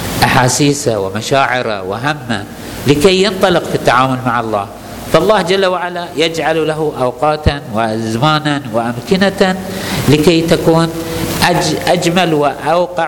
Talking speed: 95 wpm